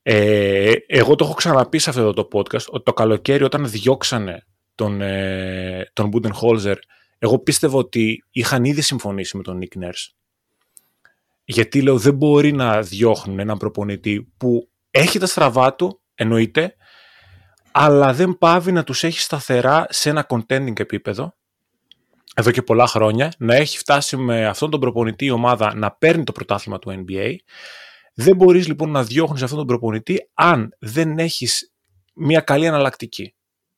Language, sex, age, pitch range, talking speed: Greek, male, 20-39, 105-150 Hz, 155 wpm